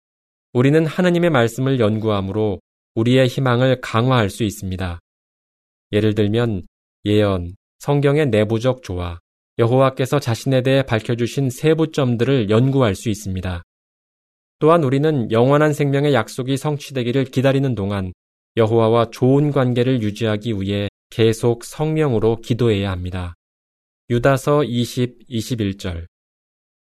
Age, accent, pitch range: 20-39, native, 100-130 Hz